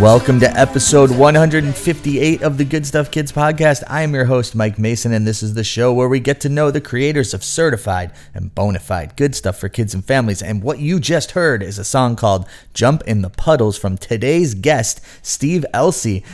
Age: 30-49